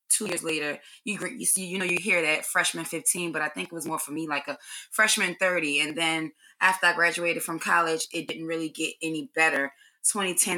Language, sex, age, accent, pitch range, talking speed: English, female, 20-39, American, 155-175 Hz, 220 wpm